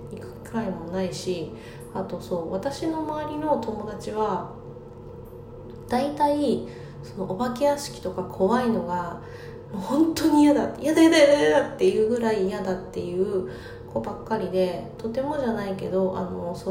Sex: female